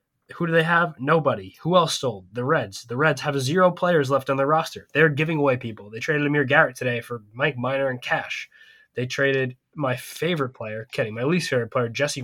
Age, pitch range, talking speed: 20-39, 130-155 Hz, 215 wpm